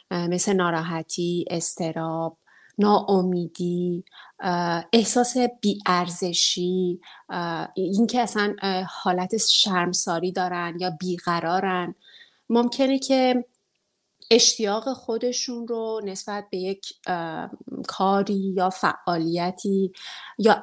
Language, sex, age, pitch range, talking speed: English, female, 30-49, 180-225 Hz, 75 wpm